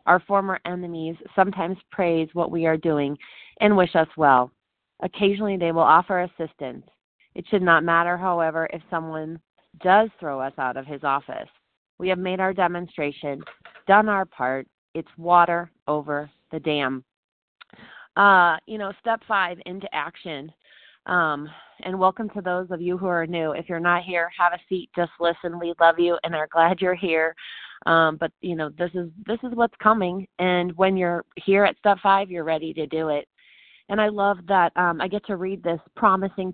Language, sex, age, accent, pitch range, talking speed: English, female, 30-49, American, 160-190 Hz, 185 wpm